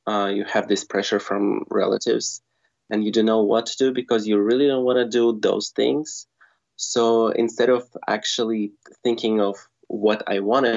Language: English